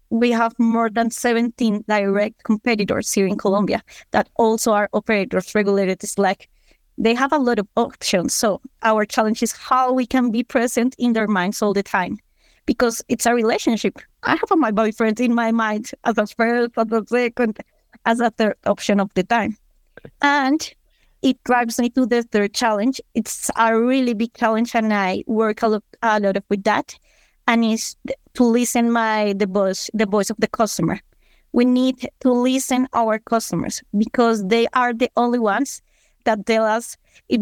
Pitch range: 215-260 Hz